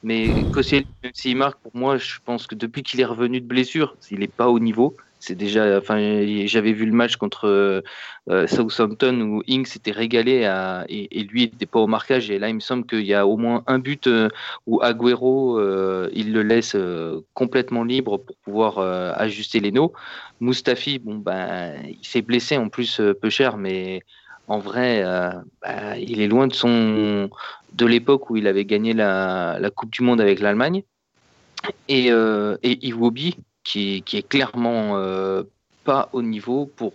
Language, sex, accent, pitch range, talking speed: French, male, French, 100-125 Hz, 190 wpm